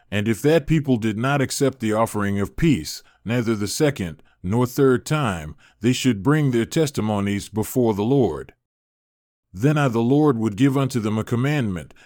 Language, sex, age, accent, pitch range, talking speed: English, male, 40-59, American, 110-140 Hz, 175 wpm